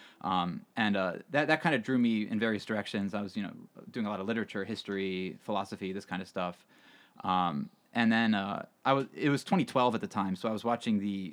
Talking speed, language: 240 wpm, English